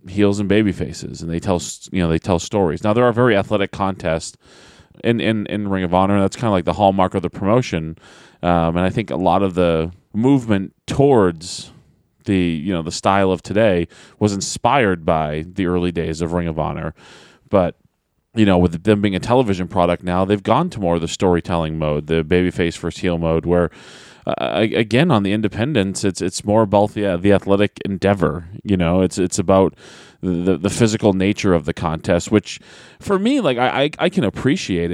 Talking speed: 205 wpm